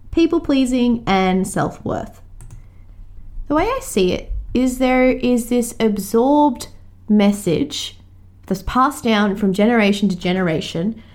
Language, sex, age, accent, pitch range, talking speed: English, female, 20-39, Australian, 180-255 Hz, 115 wpm